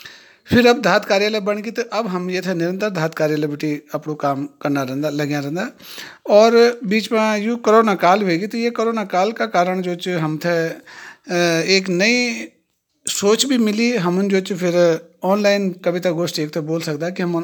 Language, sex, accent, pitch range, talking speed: Hindi, male, native, 165-215 Hz, 190 wpm